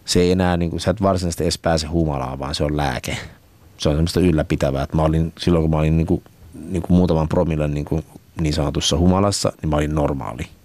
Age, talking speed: 30-49, 210 wpm